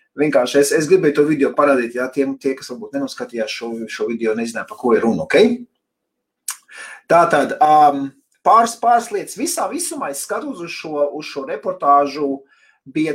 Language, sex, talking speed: English, male, 160 wpm